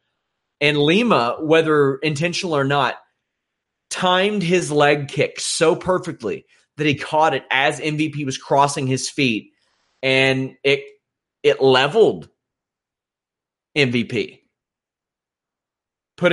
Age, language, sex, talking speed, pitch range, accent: 30-49, English, male, 105 wpm, 135-165 Hz, American